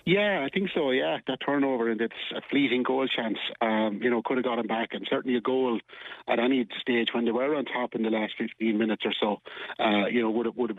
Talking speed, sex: 260 wpm, male